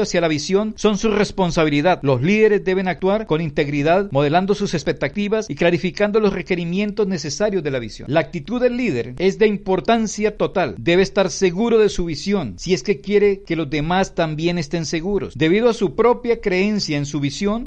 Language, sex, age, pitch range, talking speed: Spanish, male, 50-69, 165-205 Hz, 185 wpm